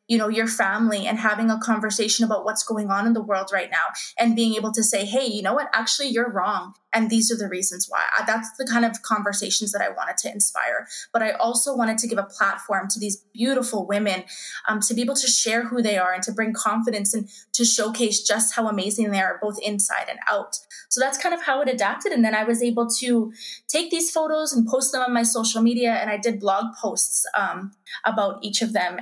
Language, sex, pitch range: English, female, 205-230 Hz